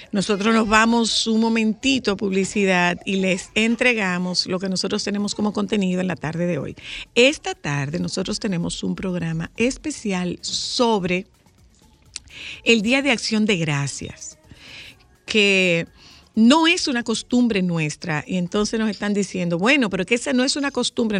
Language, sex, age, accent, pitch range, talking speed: Spanish, female, 50-69, American, 180-225 Hz, 155 wpm